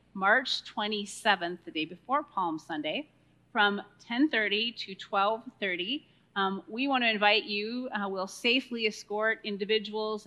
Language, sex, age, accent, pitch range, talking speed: English, female, 30-49, American, 180-225 Hz, 130 wpm